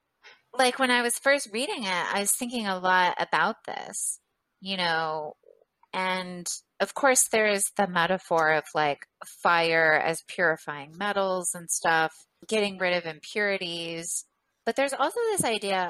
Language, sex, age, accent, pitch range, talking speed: English, female, 30-49, American, 170-235 Hz, 150 wpm